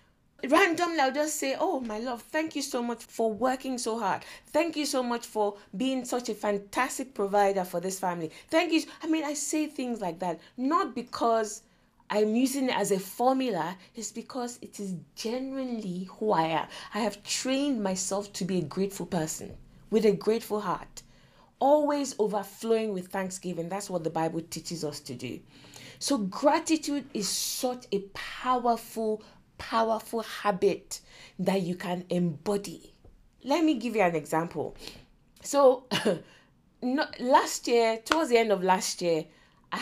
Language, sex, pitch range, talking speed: English, female, 180-250 Hz, 165 wpm